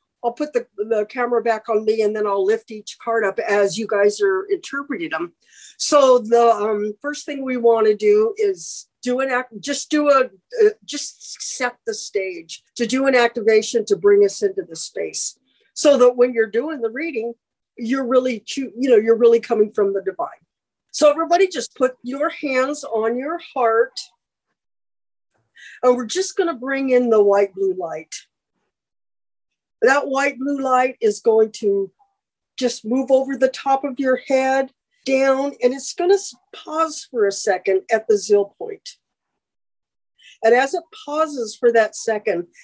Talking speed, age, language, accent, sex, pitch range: 175 wpm, 50-69, English, American, female, 225-295 Hz